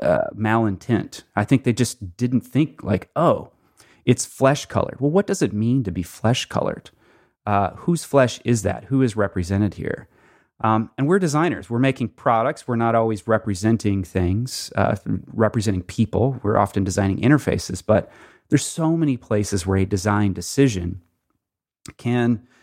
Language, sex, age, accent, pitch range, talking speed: English, male, 30-49, American, 100-125 Hz, 160 wpm